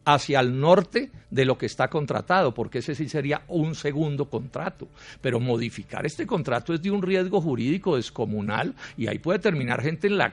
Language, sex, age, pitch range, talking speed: Spanish, male, 60-79, 140-190 Hz, 185 wpm